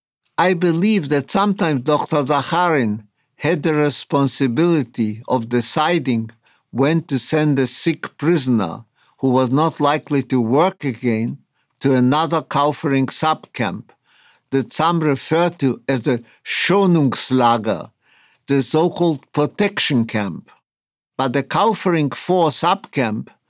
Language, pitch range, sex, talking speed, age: English, 135-170 Hz, male, 110 wpm, 60-79